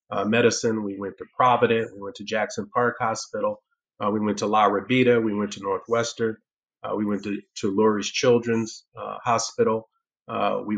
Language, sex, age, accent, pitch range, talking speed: English, male, 30-49, American, 105-120 Hz, 185 wpm